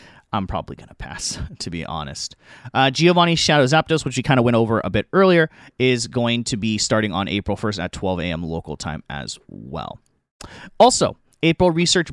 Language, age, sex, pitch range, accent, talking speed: English, 30-49, male, 105-145 Hz, American, 195 wpm